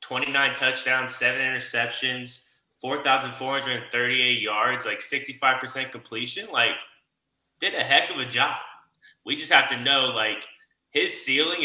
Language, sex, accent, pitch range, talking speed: English, male, American, 120-160 Hz, 125 wpm